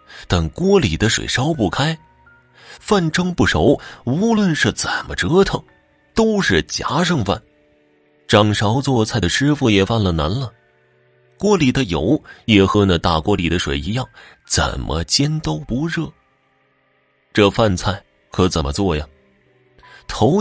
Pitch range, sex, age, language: 80-125 Hz, male, 30-49, Chinese